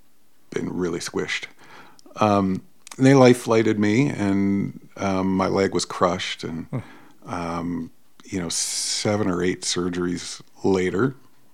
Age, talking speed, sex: 50-69, 120 wpm, male